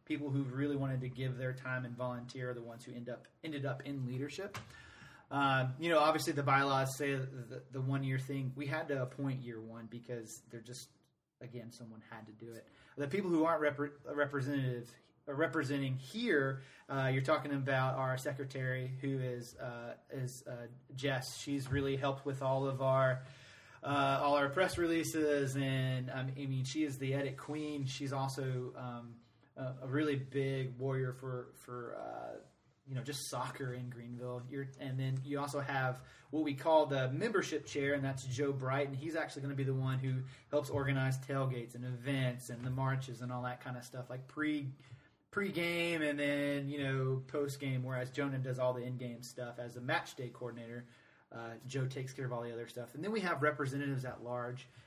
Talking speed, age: 200 wpm, 30-49